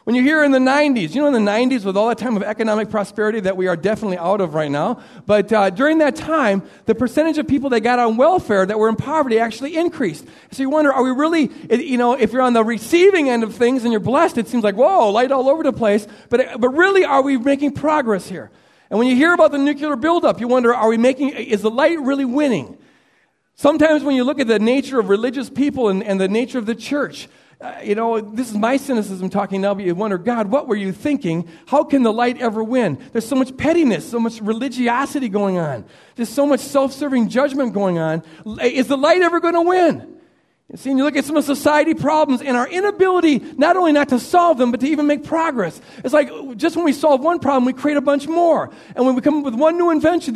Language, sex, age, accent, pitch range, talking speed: English, male, 40-59, American, 225-295 Hz, 250 wpm